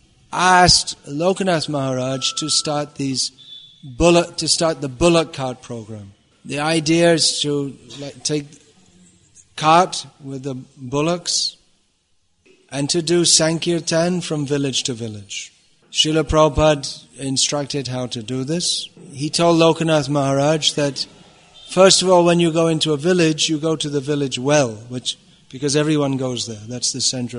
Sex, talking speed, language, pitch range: male, 140 wpm, English, 140-175 Hz